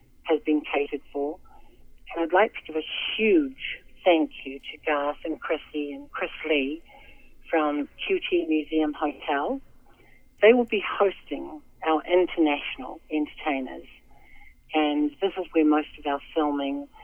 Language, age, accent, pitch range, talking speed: English, 50-69, American, 145-190 Hz, 135 wpm